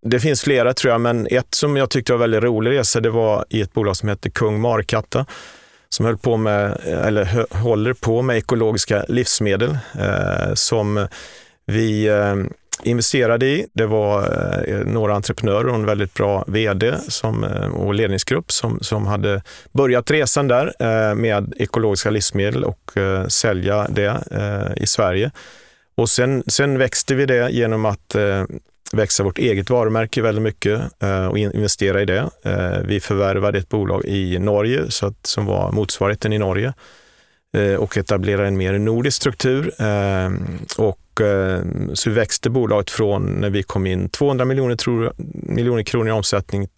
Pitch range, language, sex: 100-120 Hz, Swedish, male